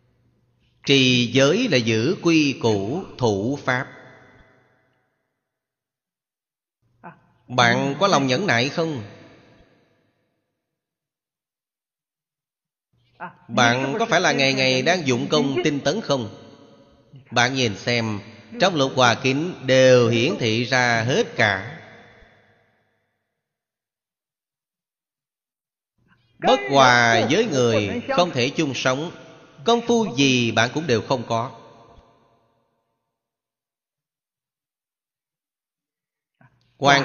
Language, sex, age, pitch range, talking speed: Vietnamese, male, 30-49, 120-140 Hz, 90 wpm